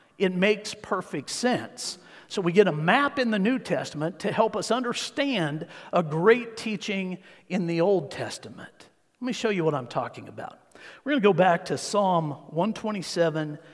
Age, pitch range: 50-69, 155-195 Hz